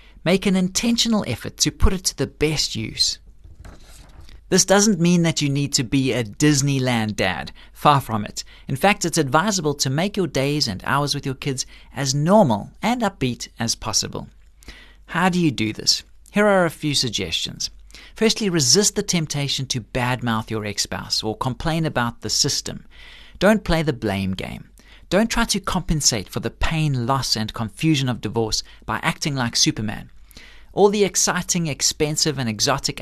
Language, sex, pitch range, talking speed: English, male, 120-180 Hz, 170 wpm